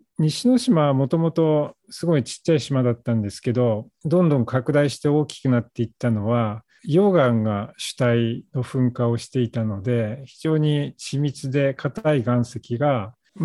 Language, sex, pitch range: Japanese, male, 115-155 Hz